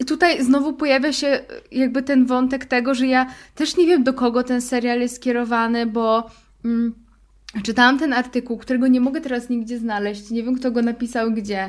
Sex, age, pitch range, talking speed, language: female, 20-39, 210-250 Hz, 185 wpm, Polish